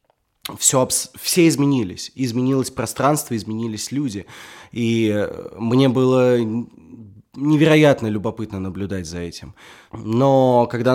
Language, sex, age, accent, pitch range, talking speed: Russian, male, 20-39, native, 100-125 Hz, 95 wpm